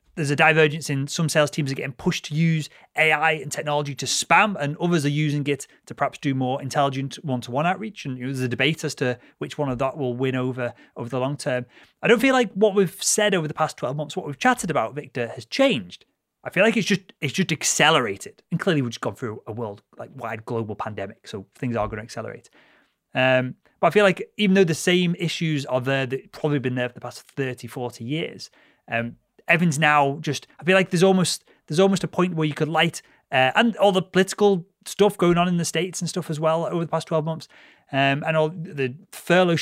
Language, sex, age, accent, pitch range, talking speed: English, male, 30-49, British, 135-180 Hz, 235 wpm